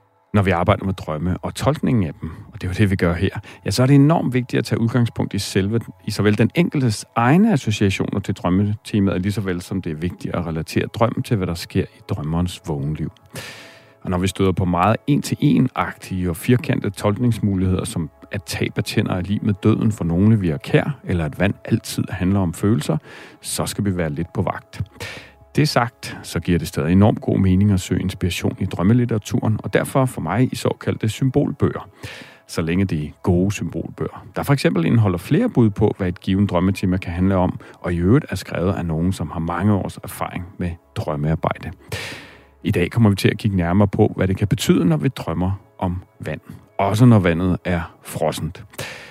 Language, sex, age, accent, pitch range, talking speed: Danish, male, 40-59, native, 90-115 Hz, 205 wpm